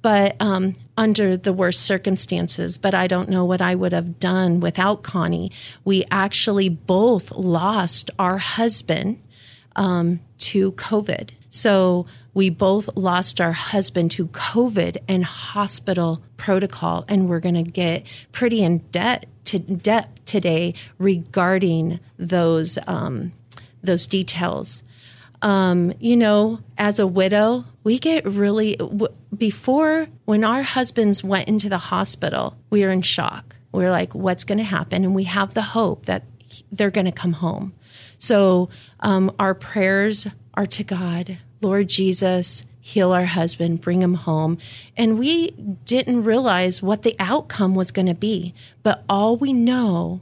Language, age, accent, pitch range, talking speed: English, 40-59, American, 170-205 Hz, 150 wpm